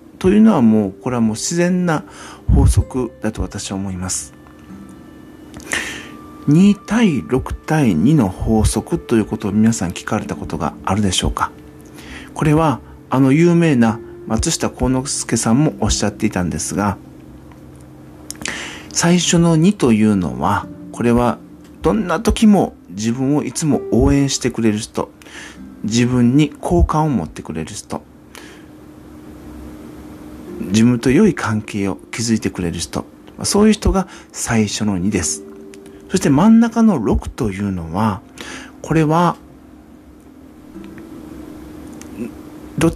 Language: Japanese